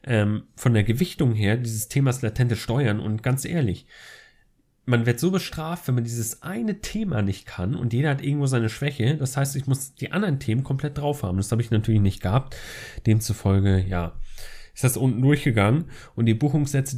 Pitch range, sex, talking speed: 110-135 Hz, male, 190 wpm